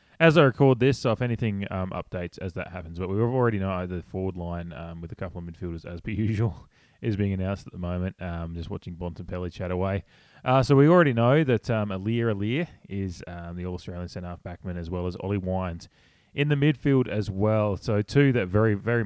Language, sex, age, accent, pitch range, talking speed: English, male, 20-39, Australian, 90-110 Hz, 220 wpm